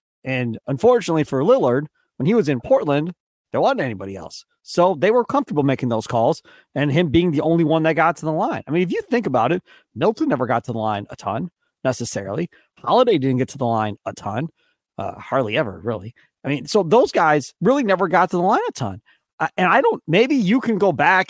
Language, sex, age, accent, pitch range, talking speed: English, male, 40-59, American, 130-185 Hz, 230 wpm